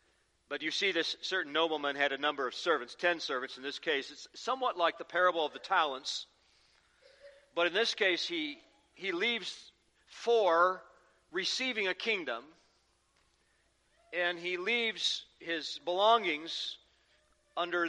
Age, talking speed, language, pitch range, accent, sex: 50-69, 140 wpm, English, 145-195 Hz, American, male